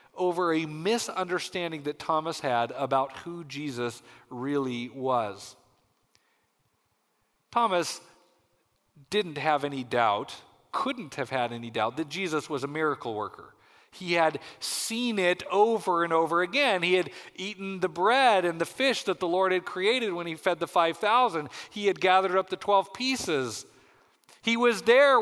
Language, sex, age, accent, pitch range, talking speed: English, male, 40-59, American, 145-195 Hz, 150 wpm